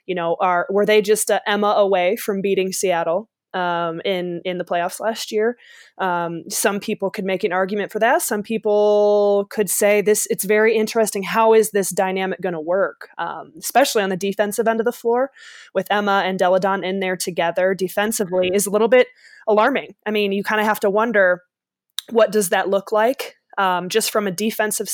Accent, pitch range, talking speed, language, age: American, 185-220 Hz, 200 wpm, English, 20-39